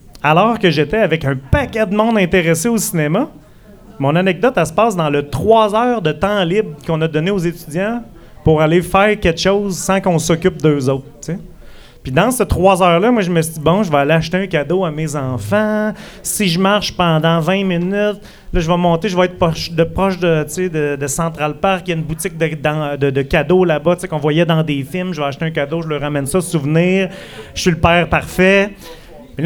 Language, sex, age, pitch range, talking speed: French, male, 30-49, 165-200 Hz, 240 wpm